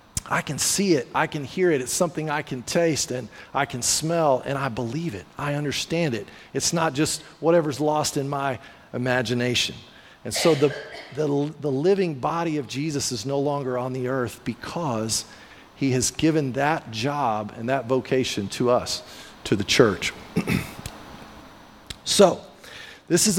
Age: 40-59